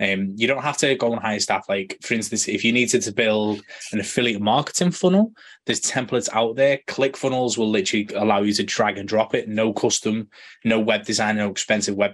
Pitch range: 105-130 Hz